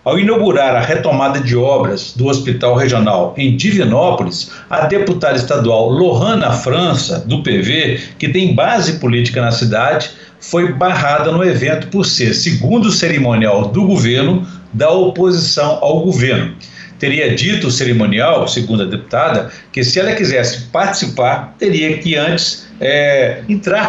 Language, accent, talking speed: Portuguese, Brazilian, 135 wpm